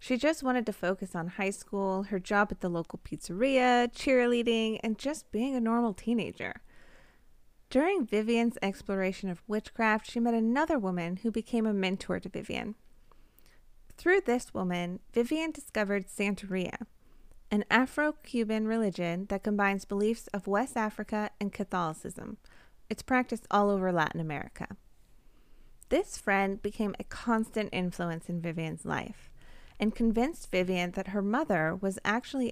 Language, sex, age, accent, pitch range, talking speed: English, female, 20-39, American, 185-230 Hz, 140 wpm